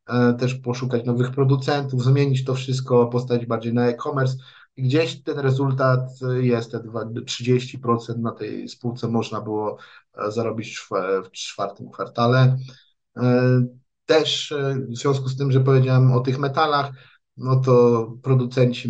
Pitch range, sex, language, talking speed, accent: 115-135 Hz, male, Polish, 130 wpm, native